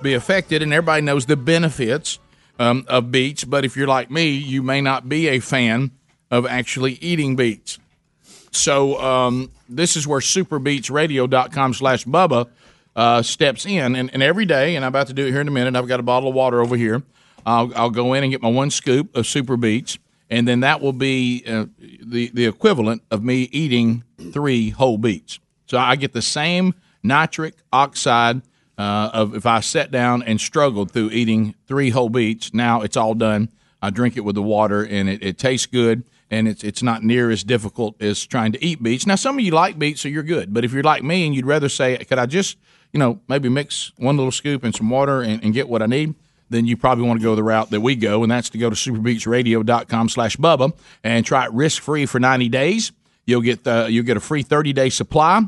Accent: American